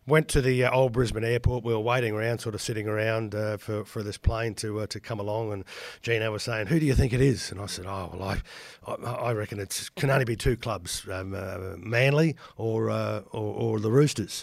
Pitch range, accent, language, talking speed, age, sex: 105-130 Hz, Australian, English, 240 wpm, 50-69, male